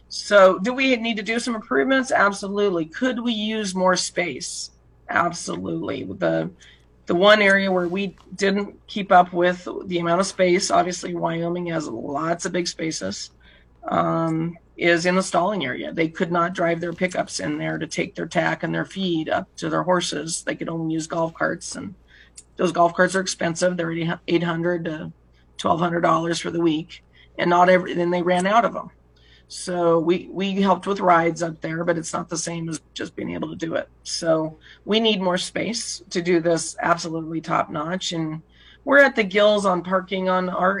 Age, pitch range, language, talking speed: 30-49, 165-185 Hz, English, 195 wpm